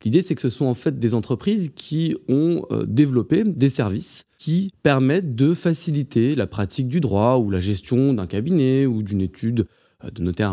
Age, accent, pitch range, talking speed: 20-39, French, 105-145 Hz, 180 wpm